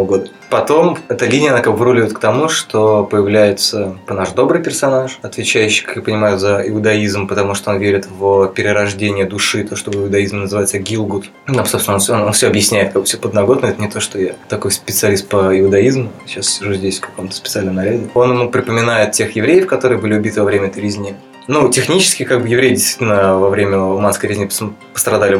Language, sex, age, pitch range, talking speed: Russian, male, 20-39, 100-115 Hz, 195 wpm